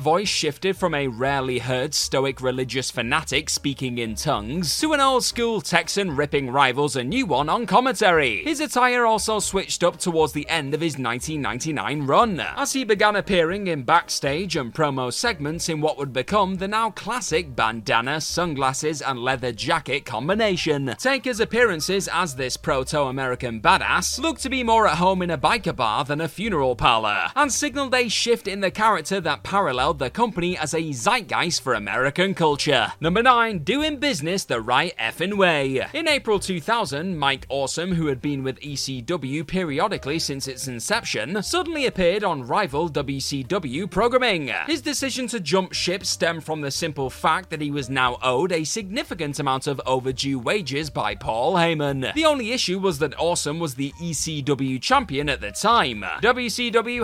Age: 30-49